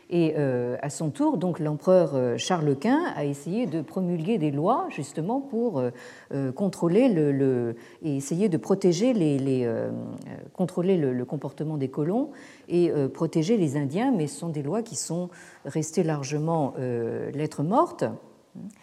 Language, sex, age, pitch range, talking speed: French, female, 50-69, 150-220 Hz, 140 wpm